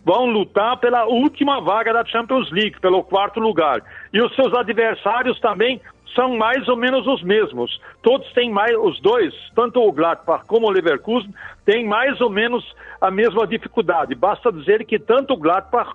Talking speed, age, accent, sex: 175 wpm, 60-79, Brazilian, male